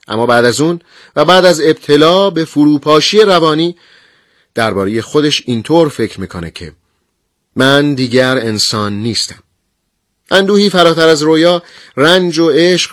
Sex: male